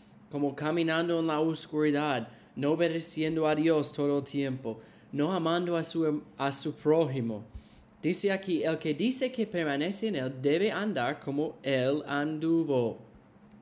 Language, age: Spanish, 20-39